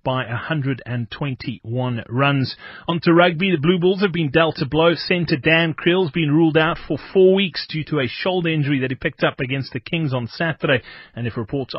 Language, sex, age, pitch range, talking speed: English, male, 30-49, 130-165 Hz, 210 wpm